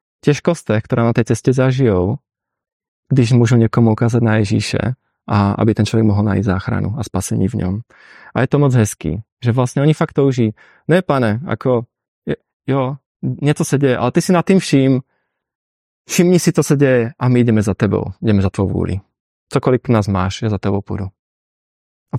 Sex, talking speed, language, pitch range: male, 185 wpm, Czech, 110-140 Hz